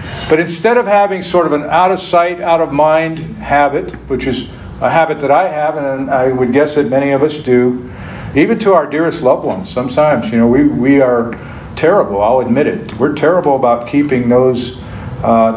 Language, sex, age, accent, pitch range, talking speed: English, male, 50-69, American, 120-160 Hz, 185 wpm